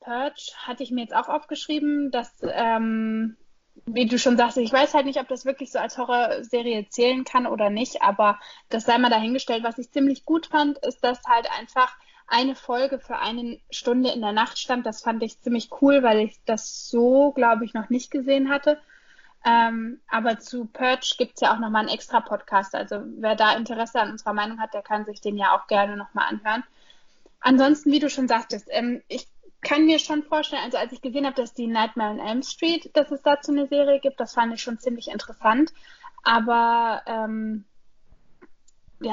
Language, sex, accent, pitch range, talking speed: German, female, German, 220-270 Hz, 200 wpm